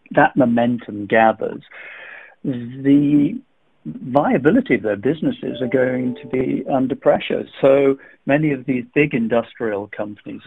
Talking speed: 120 wpm